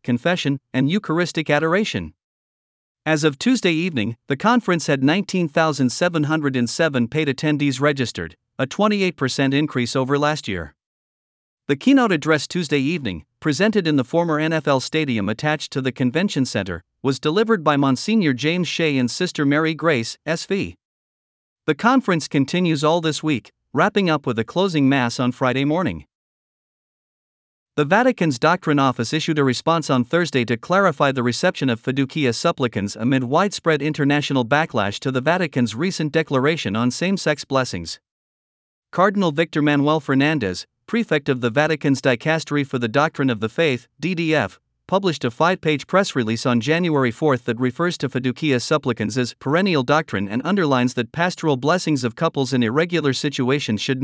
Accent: American